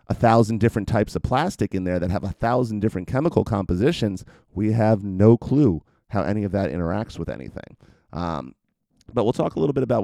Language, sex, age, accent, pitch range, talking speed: English, male, 30-49, American, 100-120 Hz, 205 wpm